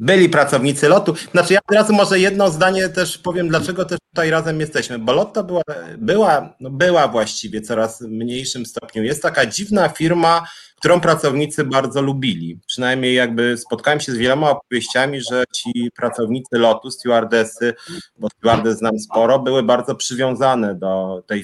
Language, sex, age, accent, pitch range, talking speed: Polish, male, 30-49, native, 115-160 Hz, 155 wpm